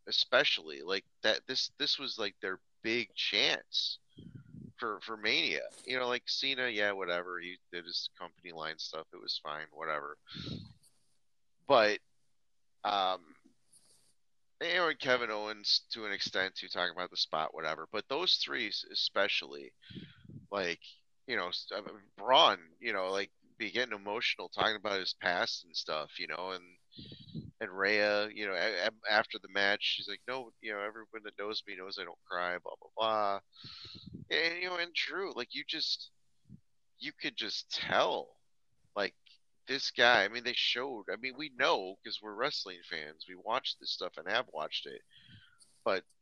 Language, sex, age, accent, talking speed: English, male, 30-49, American, 165 wpm